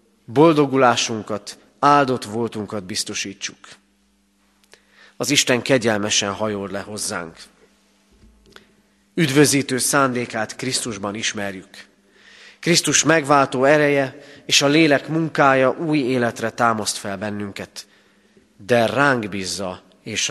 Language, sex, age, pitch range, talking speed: Hungarian, male, 30-49, 105-145 Hz, 90 wpm